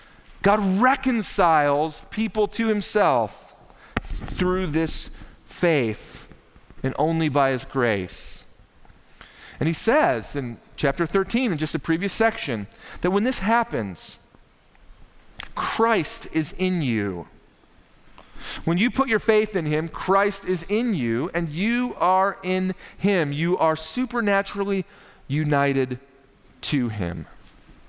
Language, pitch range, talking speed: English, 155-220 Hz, 115 wpm